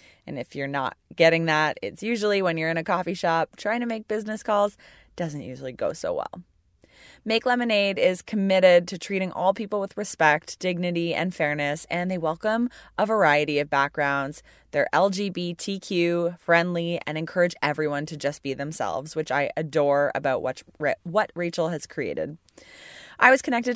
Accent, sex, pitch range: American, female, 155-205 Hz